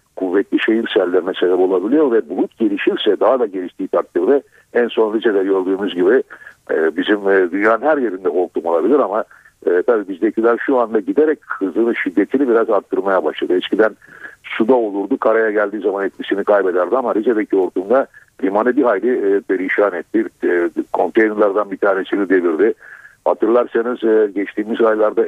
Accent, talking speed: native, 135 wpm